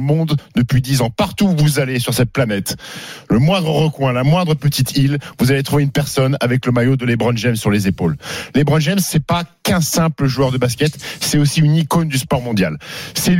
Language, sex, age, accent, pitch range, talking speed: French, male, 50-69, French, 135-165 Hz, 220 wpm